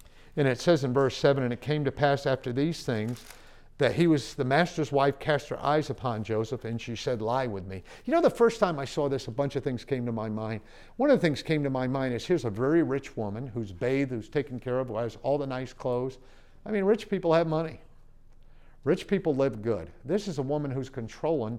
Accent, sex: American, male